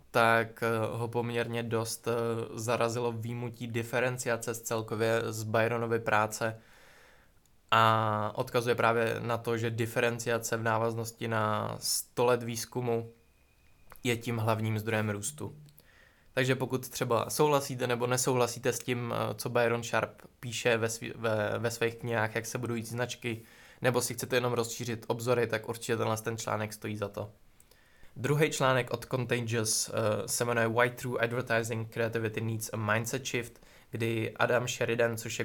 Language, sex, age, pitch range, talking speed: Czech, male, 20-39, 115-120 Hz, 145 wpm